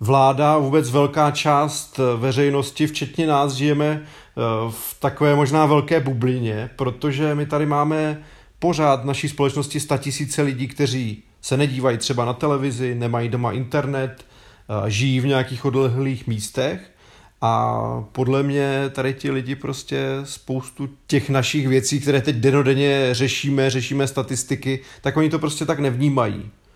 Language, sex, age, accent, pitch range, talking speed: Czech, male, 30-49, native, 125-140 Hz, 135 wpm